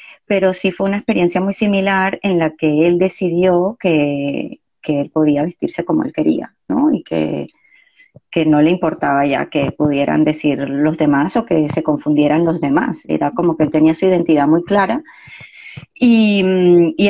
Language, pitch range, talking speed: Spanish, 155-225 Hz, 175 wpm